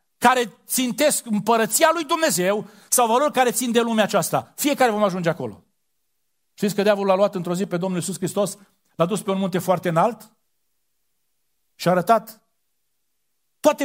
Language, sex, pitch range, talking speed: Romanian, male, 165-245 Hz, 165 wpm